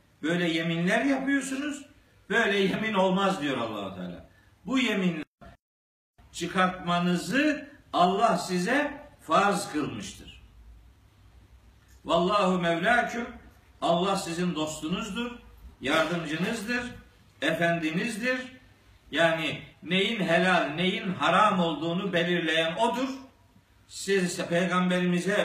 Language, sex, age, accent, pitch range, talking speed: Turkish, male, 50-69, native, 145-215 Hz, 80 wpm